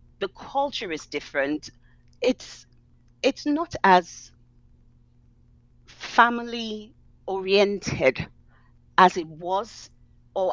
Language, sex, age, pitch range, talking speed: English, female, 40-59, 150-220 Hz, 80 wpm